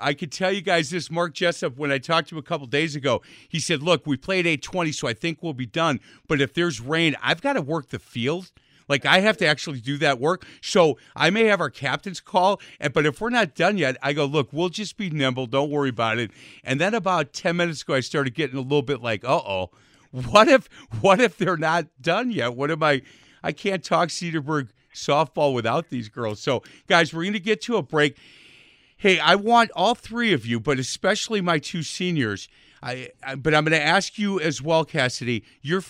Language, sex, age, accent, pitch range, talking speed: English, male, 50-69, American, 140-180 Hz, 230 wpm